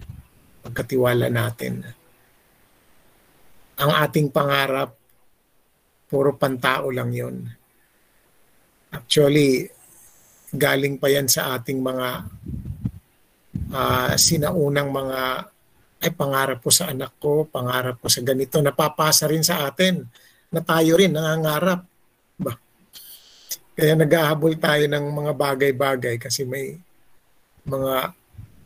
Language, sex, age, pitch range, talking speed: Filipino, male, 50-69, 125-155 Hz, 100 wpm